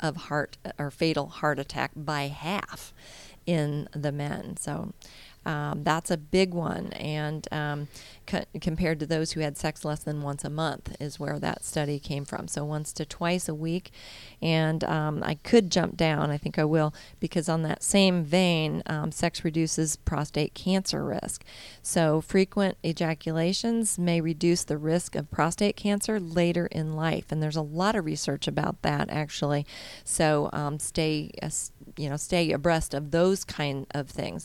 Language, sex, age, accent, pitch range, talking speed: English, female, 40-59, American, 150-175 Hz, 170 wpm